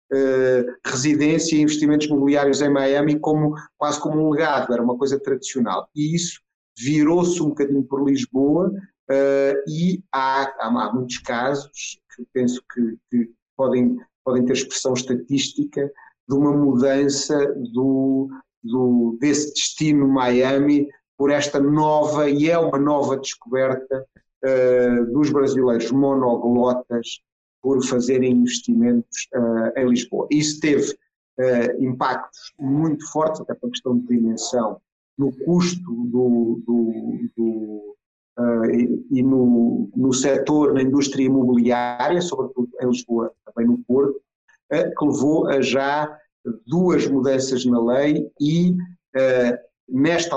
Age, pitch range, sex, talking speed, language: 50-69, 125-150 Hz, male, 120 wpm, Portuguese